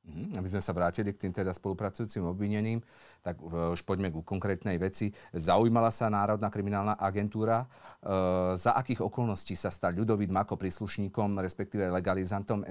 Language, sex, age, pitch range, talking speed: Slovak, male, 40-59, 95-110 Hz, 155 wpm